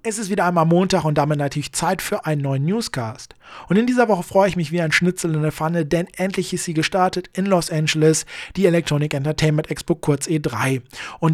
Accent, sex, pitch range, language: German, male, 150-180 Hz, German